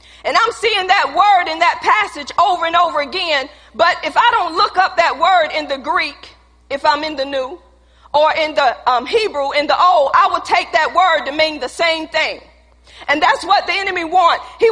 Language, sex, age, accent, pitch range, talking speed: English, female, 40-59, American, 315-420 Hz, 215 wpm